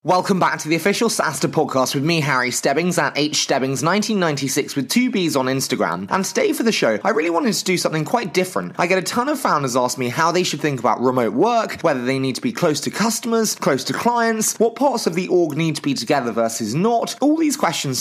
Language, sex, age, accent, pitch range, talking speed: English, male, 20-39, British, 130-195 Hz, 235 wpm